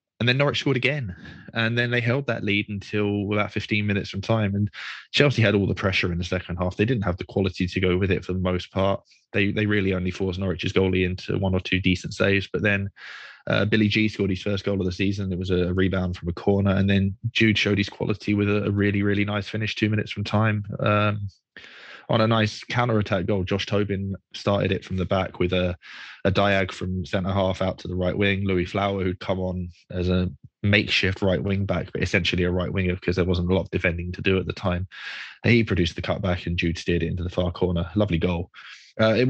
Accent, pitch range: British, 90-105 Hz